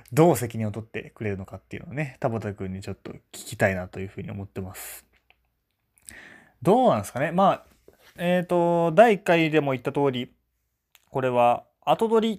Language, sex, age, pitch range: Japanese, male, 20-39, 105-155 Hz